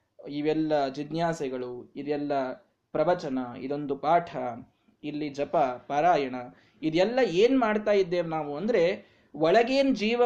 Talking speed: 100 wpm